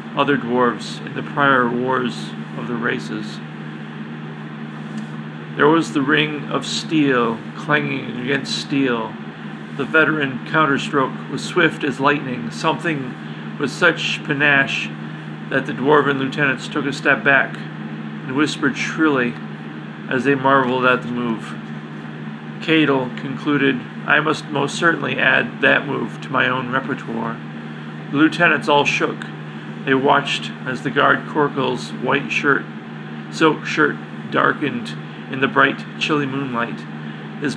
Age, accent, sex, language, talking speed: 40-59, American, male, English, 130 wpm